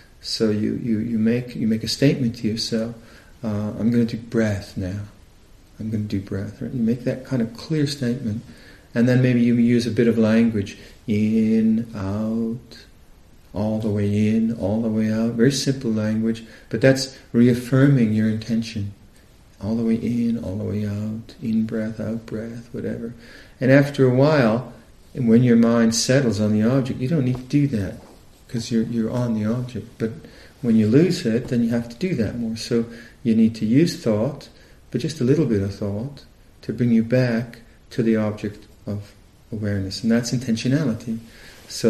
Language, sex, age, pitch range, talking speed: English, male, 50-69, 110-120 Hz, 190 wpm